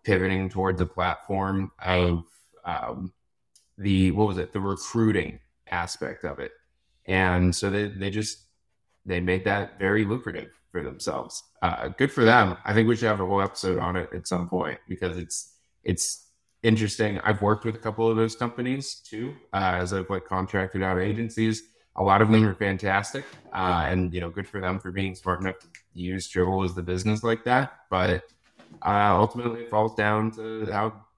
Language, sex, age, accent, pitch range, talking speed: English, male, 20-39, American, 90-110 Hz, 185 wpm